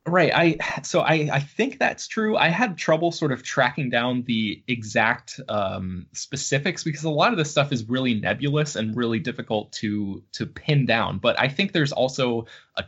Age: 20-39